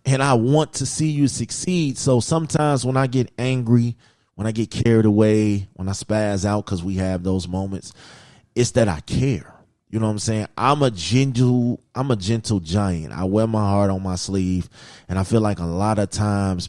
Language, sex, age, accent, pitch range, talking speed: English, male, 30-49, American, 95-120 Hz, 210 wpm